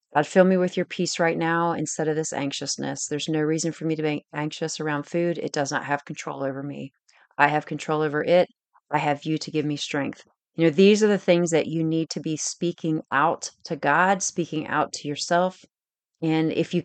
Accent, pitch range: American, 150-175 Hz